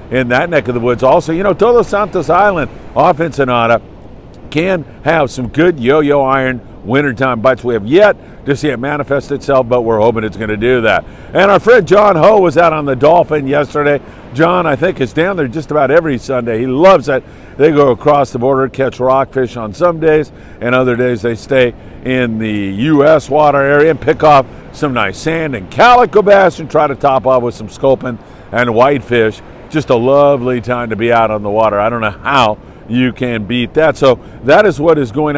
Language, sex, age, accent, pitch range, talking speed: English, male, 50-69, American, 120-155 Hz, 210 wpm